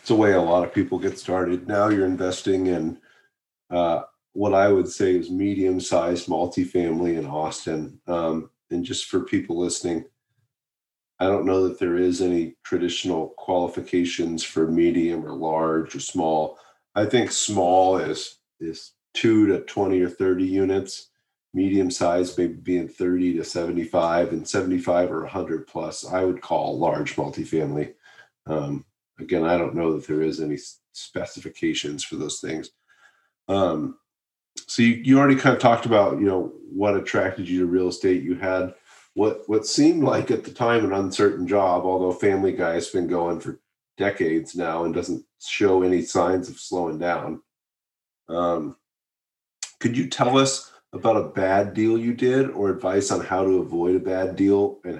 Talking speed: 165 wpm